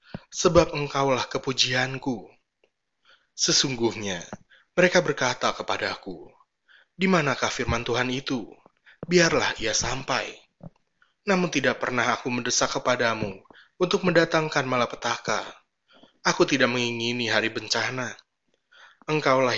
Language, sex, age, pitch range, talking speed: Indonesian, male, 20-39, 115-150 Hz, 90 wpm